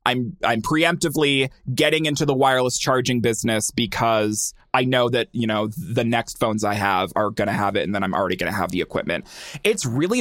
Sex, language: male, English